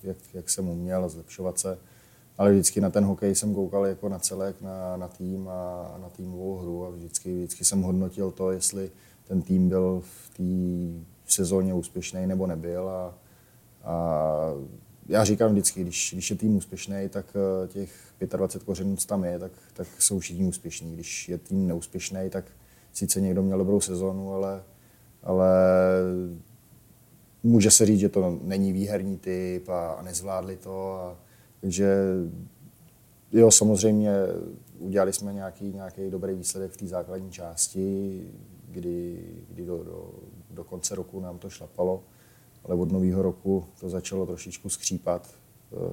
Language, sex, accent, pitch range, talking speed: Czech, male, native, 90-100 Hz, 150 wpm